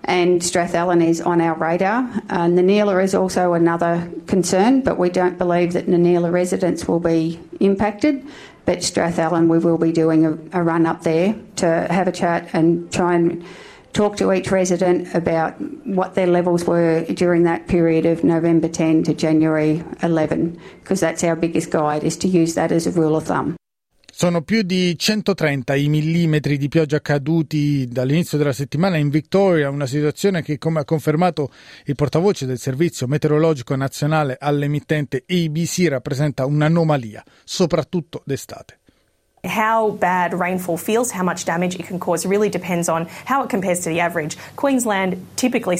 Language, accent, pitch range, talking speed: Italian, Australian, 160-185 Hz, 165 wpm